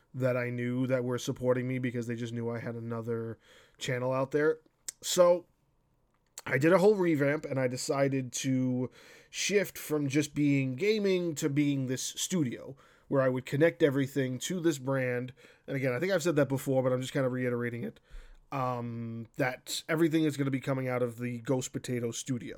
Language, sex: English, male